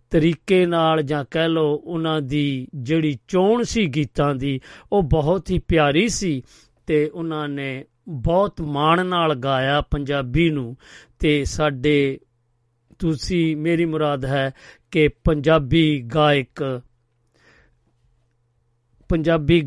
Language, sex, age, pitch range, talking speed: Punjabi, male, 50-69, 140-165 Hz, 110 wpm